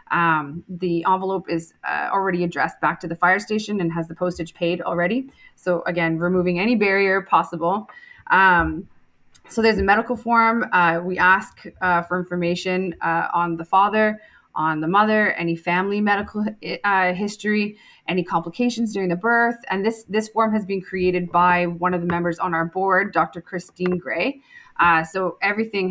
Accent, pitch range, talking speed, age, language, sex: American, 170-195 Hz, 170 wpm, 20-39, English, female